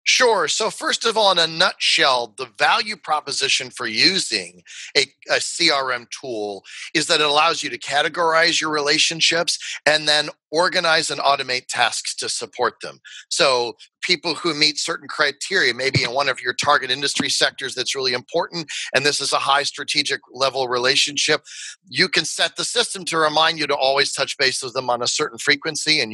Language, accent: English, American